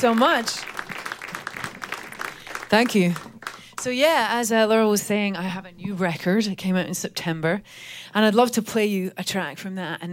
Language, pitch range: English, 160-210 Hz